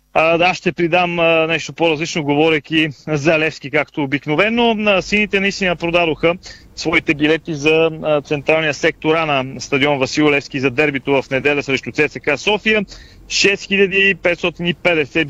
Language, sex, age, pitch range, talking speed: Bulgarian, male, 30-49, 140-170 Hz, 135 wpm